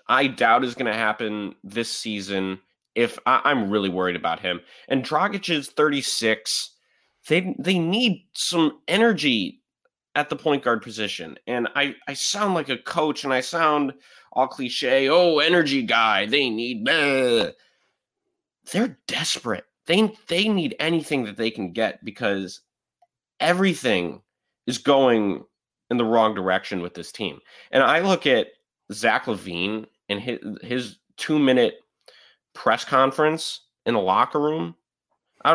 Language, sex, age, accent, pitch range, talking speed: English, male, 20-39, American, 105-170 Hz, 145 wpm